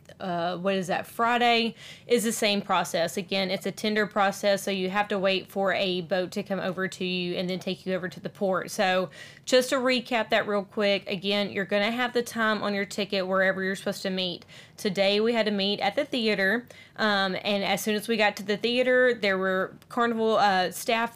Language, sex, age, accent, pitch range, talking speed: English, female, 20-39, American, 190-220 Hz, 225 wpm